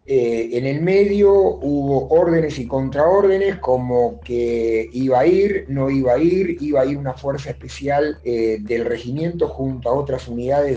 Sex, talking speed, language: male, 165 wpm, Spanish